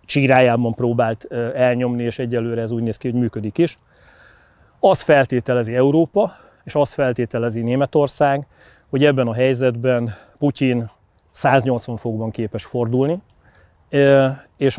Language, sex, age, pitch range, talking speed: Hungarian, male, 30-49, 120-140 Hz, 120 wpm